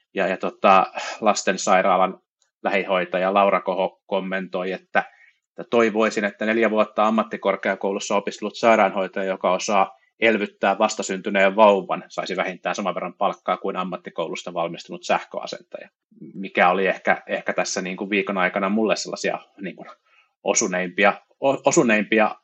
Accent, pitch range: native, 95-115 Hz